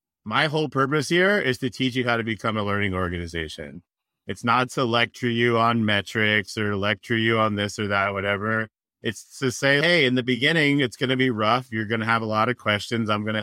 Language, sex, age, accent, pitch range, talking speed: English, male, 30-49, American, 105-135 Hz, 230 wpm